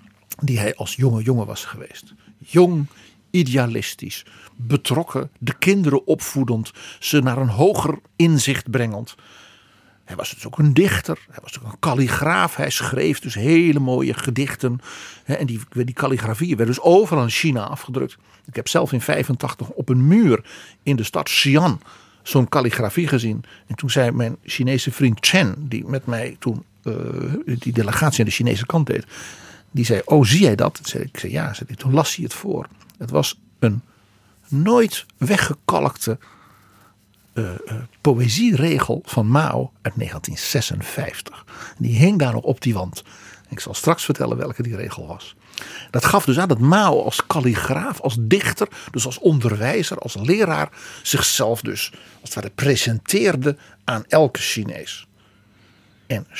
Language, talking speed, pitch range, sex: Dutch, 155 wpm, 115-145 Hz, male